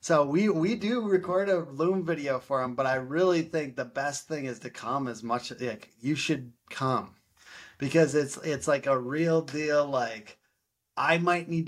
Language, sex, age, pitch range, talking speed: English, male, 30-49, 125-160 Hz, 190 wpm